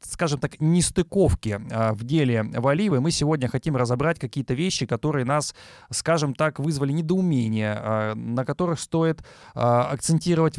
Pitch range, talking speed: 125-160 Hz, 140 wpm